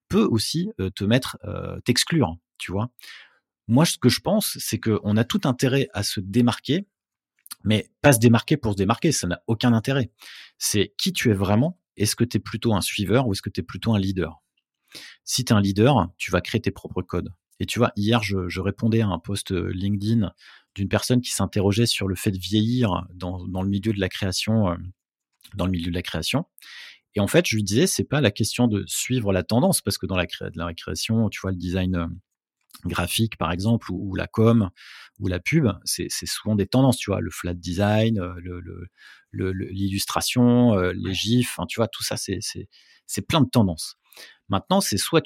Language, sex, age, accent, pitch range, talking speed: French, male, 30-49, French, 95-120 Hz, 215 wpm